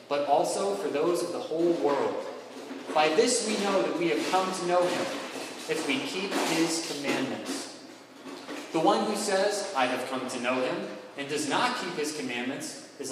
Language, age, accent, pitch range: English, 30-49, American, 130-185 Hz